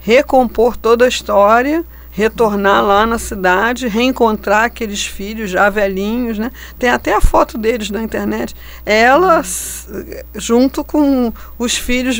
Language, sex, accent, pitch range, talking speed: Portuguese, female, Brazilian, 195-255 Hz, 130 wpm